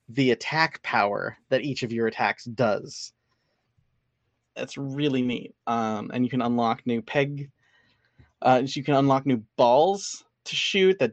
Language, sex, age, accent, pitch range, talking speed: English, male, 20-39, American, 115-135 Hz, 150 wpm